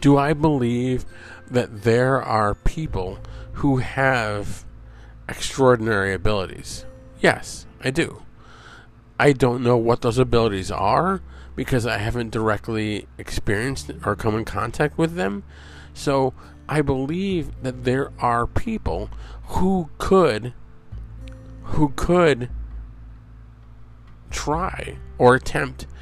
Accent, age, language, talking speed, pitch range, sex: American, 50-69, English, 105 wpm, 100-130 Hz, male